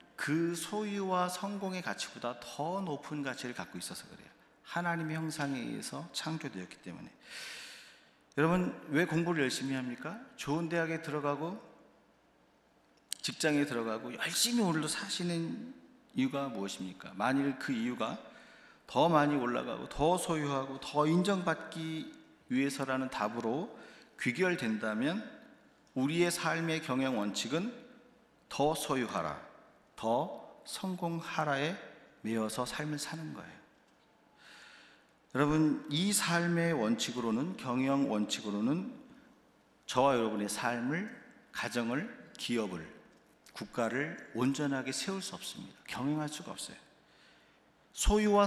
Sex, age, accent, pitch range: male, 40-59, native, 135-190 Hz